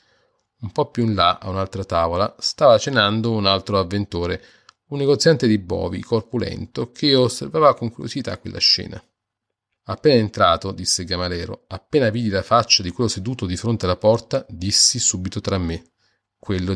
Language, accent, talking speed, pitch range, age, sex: Italian, native, 165 wpm, 95-120 Hz, 30-49, male